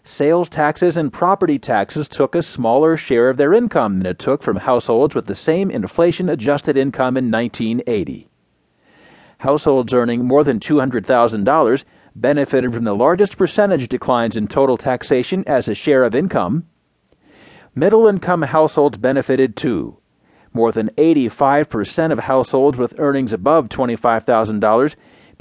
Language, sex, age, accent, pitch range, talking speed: English, male, 40-59, American, 125-160 Hz, 130 wpm